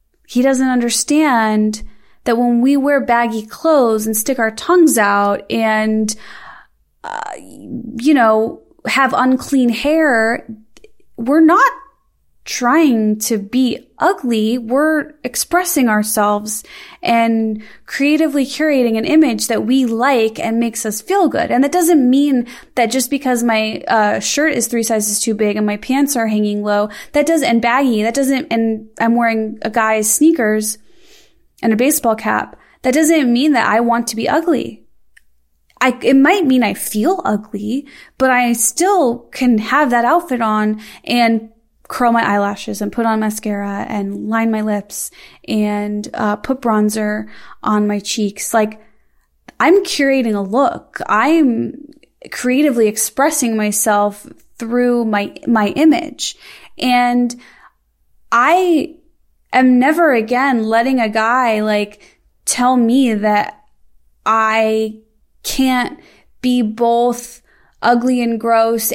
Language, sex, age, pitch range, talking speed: English, female, 20-39, 220-275 Hz, 135 wpm